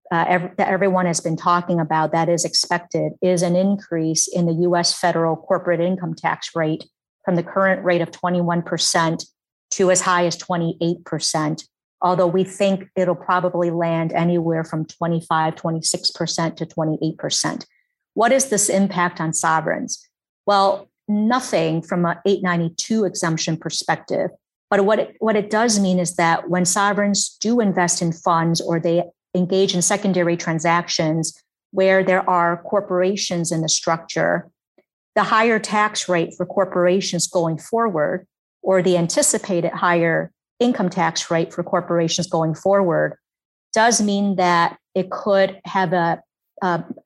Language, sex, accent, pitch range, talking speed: English, female, American, 170-195 Hz, 140 wpm